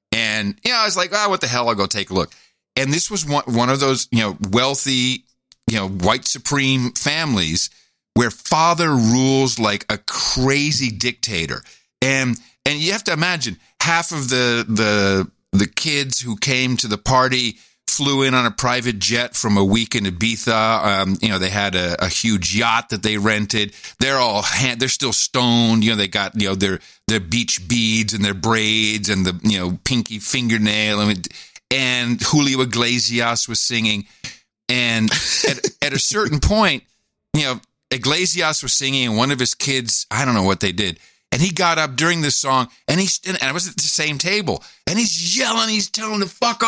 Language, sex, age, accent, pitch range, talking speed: English, male, 50-69, American, 115-185 Hz, 195 wpm